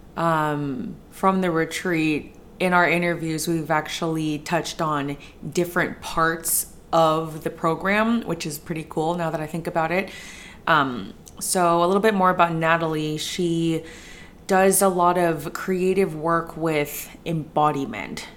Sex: female